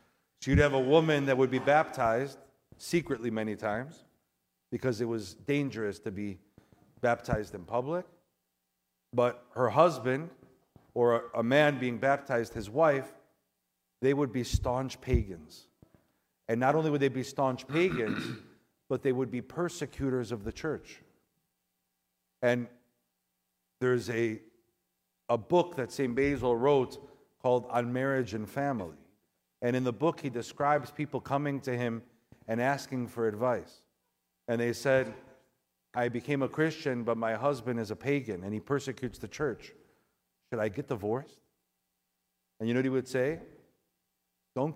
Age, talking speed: 50-69, 145 wpm